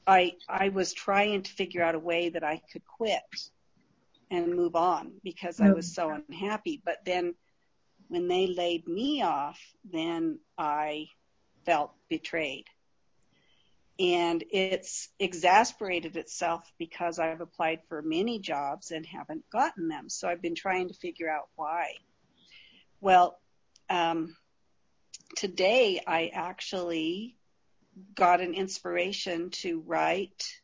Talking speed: 125 wpm